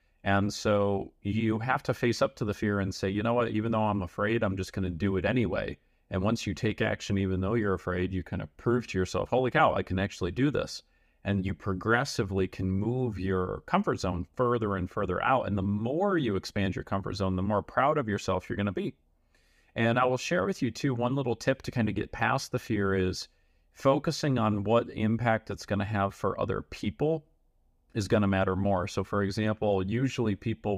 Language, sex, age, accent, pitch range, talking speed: English, male, 40-59, American, 95-115 Hz, 225 wpm